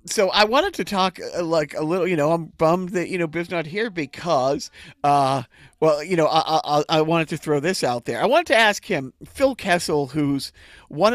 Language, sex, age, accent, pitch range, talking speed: English, male, 40-59, American, 140-185 Hz, 220 wpm